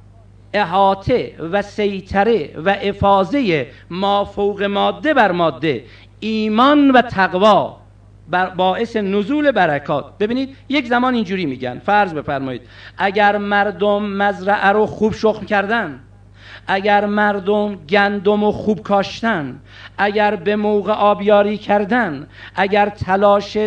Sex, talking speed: male, 105 wpm